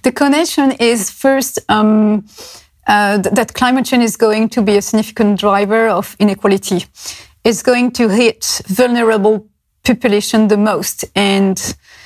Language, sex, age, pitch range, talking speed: Dutch, female, 30-49, 205-240 Hz, 135 wpm